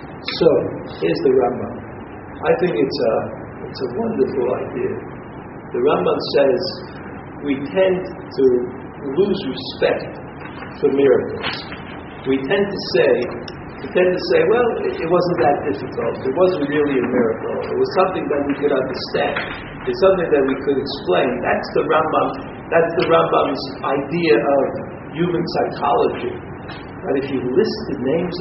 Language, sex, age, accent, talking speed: English, male, 50-69, American, 140 wpm